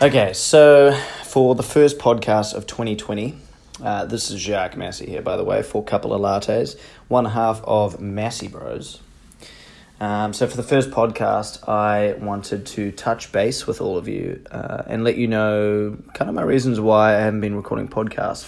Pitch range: 105-120 Hz